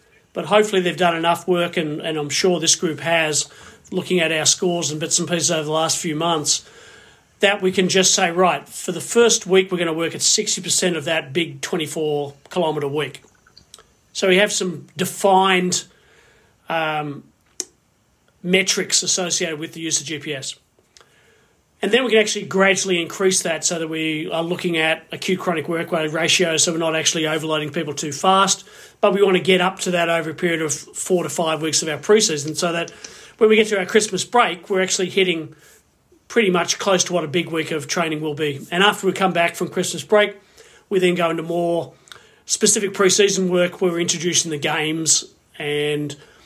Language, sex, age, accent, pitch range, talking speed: English, male, 40-59, Australian, 160-190 Hz, 195 wpm